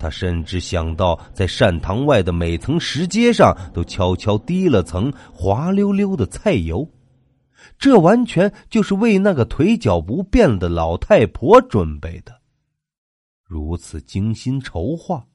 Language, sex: Chinese, male